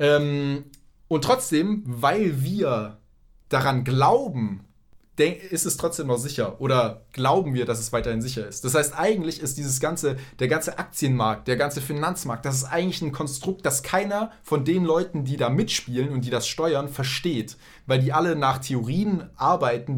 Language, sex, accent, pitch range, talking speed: German, male, German, 120-150 Hz, 165 wpm